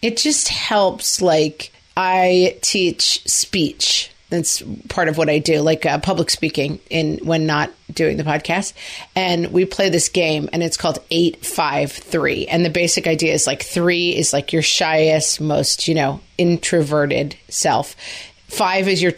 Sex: female